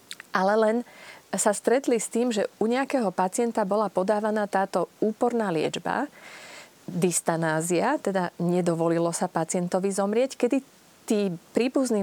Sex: female